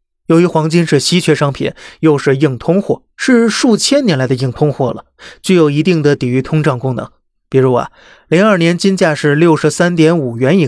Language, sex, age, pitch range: Chinese, male, 30-49, 135-175 Hz